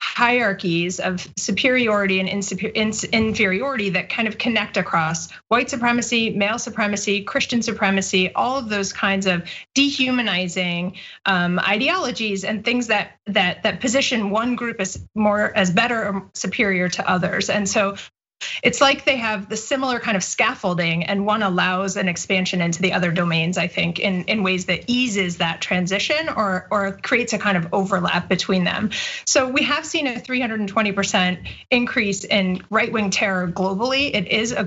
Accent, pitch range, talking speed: American, 190-240 Hz, 160 wpm